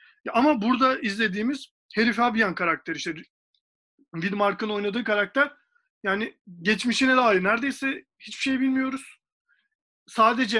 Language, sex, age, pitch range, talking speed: Turkish, male, 40-59, 185-245 Hz, 100 wpm